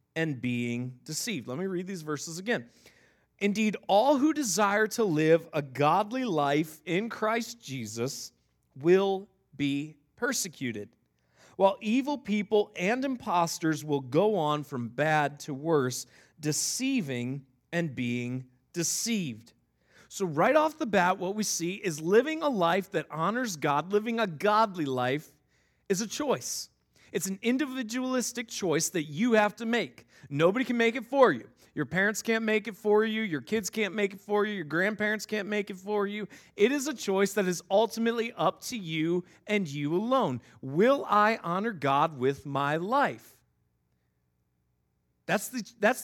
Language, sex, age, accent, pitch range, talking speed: English, male, 40-59, American, 145-220 Hz, 155 wpm